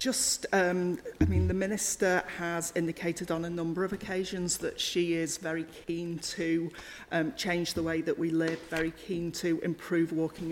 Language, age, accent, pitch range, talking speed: English, 40-59, British, 165-175 Hz, 175 wpm